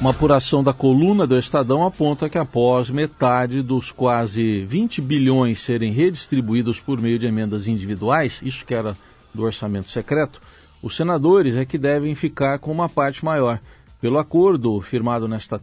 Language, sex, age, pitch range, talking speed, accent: Portuguese, male, 50-69, 120-150 Hz, 155 wpm, Brazilian